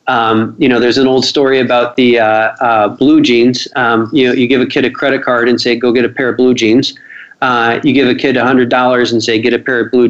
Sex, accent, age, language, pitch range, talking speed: male, American, 40-59, English, 125-165 Hz, 280 wpm